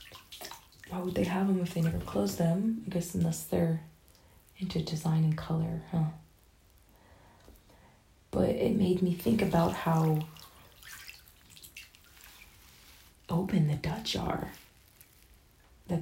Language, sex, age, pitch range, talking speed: English, female, 20-39, 155-180 Hz, 115 wpm